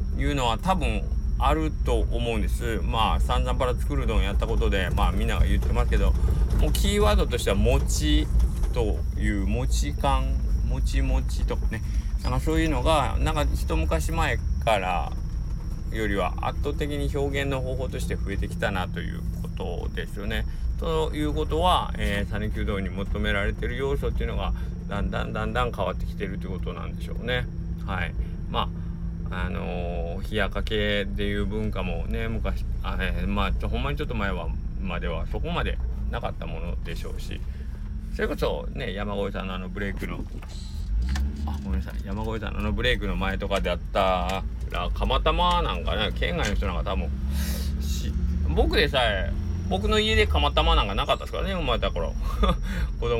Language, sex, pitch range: Japanese, male, 70-100 Hz